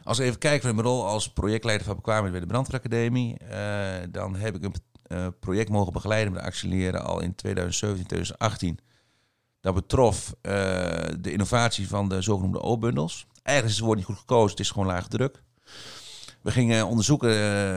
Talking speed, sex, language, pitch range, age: 175 wpm, male, Dutch, 95-115 Hz, 40-59